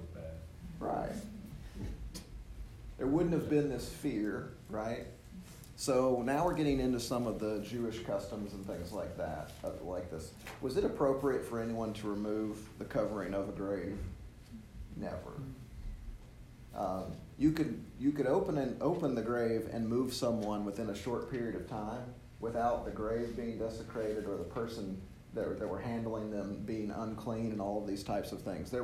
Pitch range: 100-125 Hz